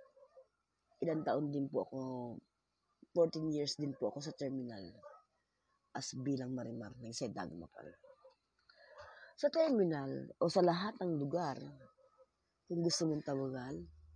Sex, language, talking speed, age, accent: female, English, 125 wpm, 20-39, Filipino